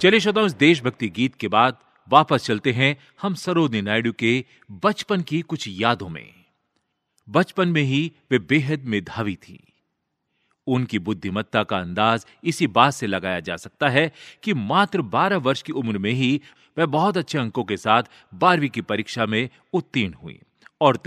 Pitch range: 110-160 Hz